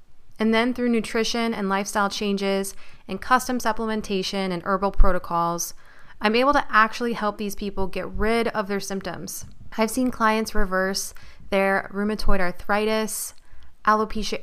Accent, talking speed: American, 135 wpm